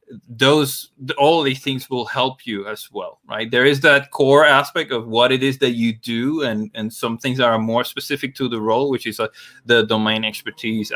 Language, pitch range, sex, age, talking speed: English, 115-140 Hz, male, 20-39, 220 wpm